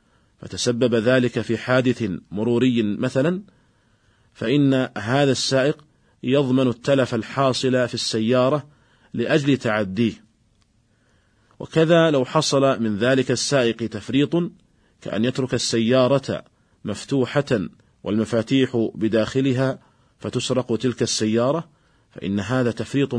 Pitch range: 110-135 Hz